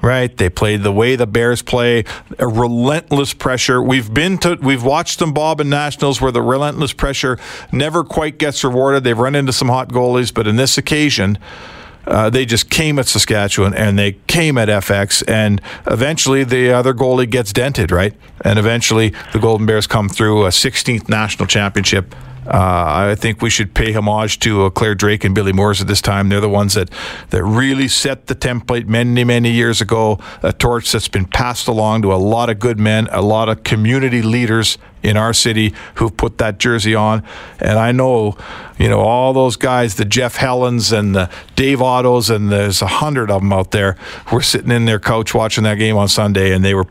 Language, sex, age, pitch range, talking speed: English, male, 50-69, 100-125 Hz, 205 wpm